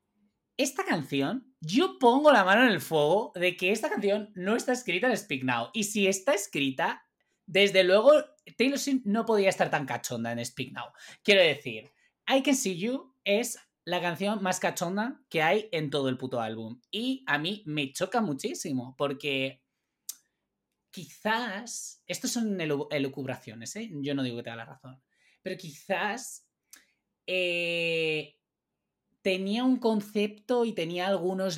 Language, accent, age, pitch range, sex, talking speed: Spanish, Spanish, 20-39, 145-210 Hz, male, 155 wpm